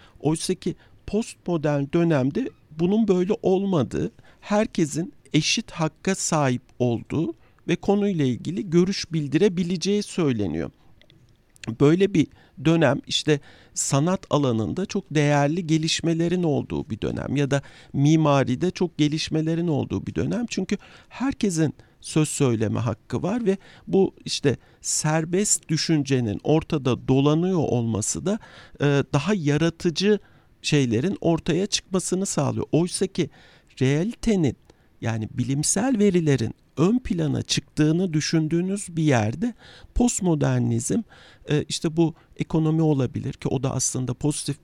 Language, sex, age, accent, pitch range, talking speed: Turkish, male, 50-69, native, 125-175 Hz, 110 wpm